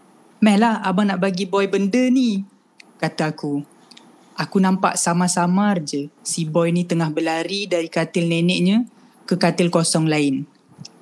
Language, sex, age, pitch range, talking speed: Malay, female, 20-39, 160-205 Hz, 140 wpm